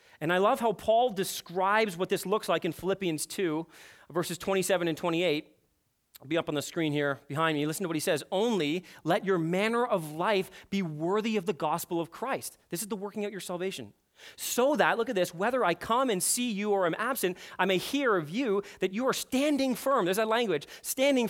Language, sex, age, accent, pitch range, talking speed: English, male, 30-49, American, 160-230 Hz, 225 wpm